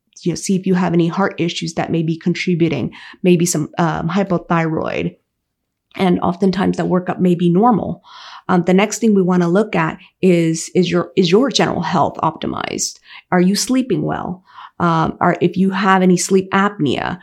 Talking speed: 185 wpm